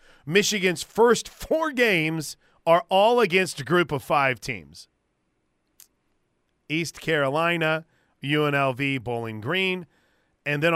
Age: 40-59